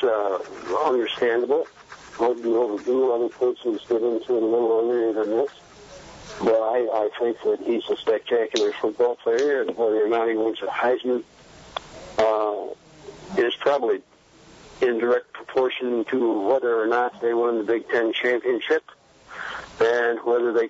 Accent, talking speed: American, 150 wpm